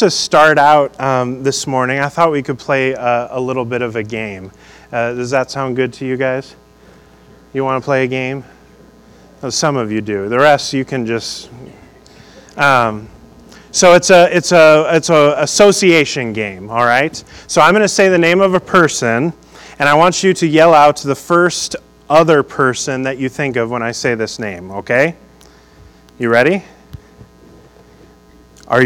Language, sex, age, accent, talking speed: English, male, 30-49, American, 185 wpm